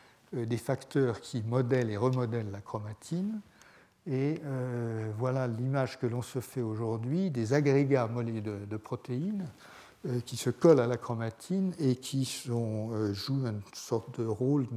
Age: 60-79